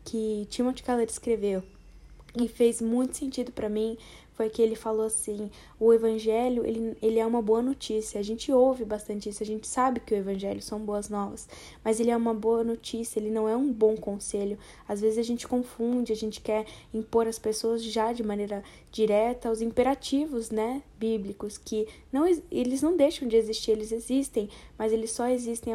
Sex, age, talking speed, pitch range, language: female, 10-29, 190 wpm, 210-240 Hz, Portuguese